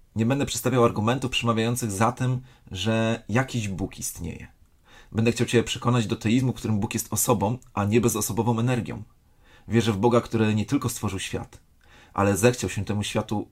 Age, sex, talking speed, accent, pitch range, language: 30-49, male, 175 wpm, native, 100-120 Hz, Polish